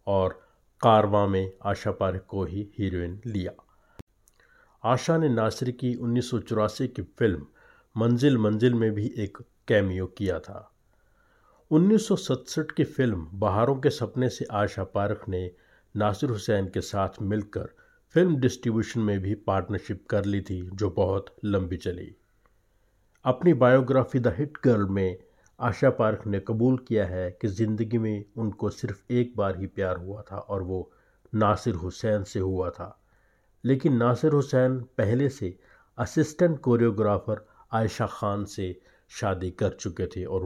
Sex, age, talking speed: male, 50-69, 140 wpm